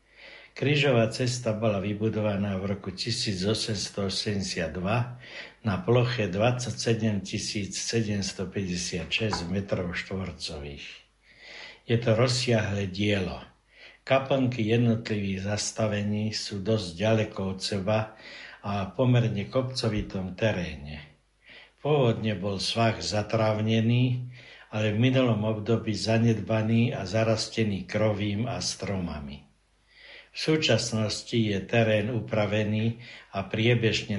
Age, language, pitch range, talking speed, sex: 60-79, Slovak, 95-115 Hz, 90 wpm, male